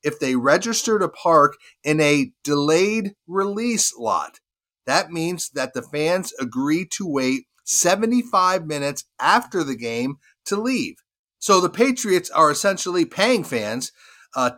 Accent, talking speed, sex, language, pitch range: American, 135 wpm, male, English, 135-185 Hz